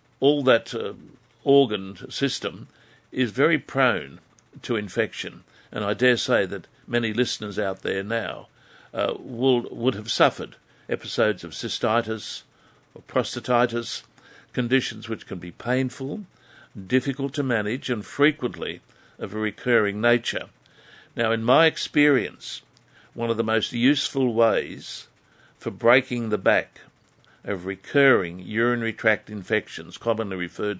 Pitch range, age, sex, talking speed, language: 105-130 Hz, 60-79, male, 125 wpm, English